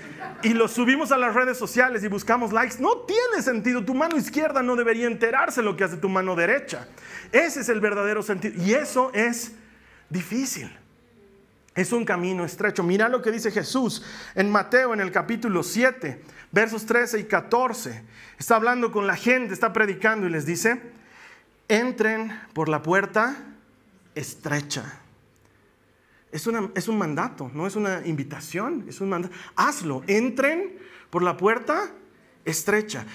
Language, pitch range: Spanish, 150-235 Hz